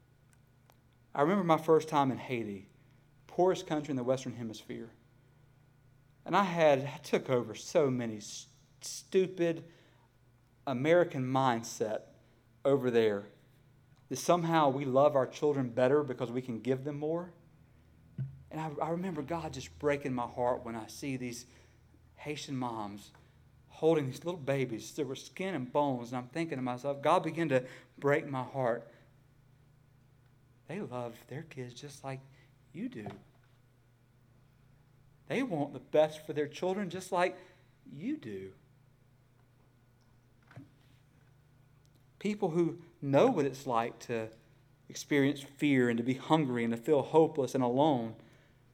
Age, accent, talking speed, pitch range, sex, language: 40-59, American, 135 wpm, 125-150 Hz, male, English